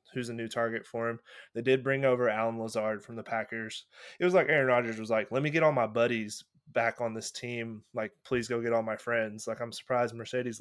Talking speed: 245 wpm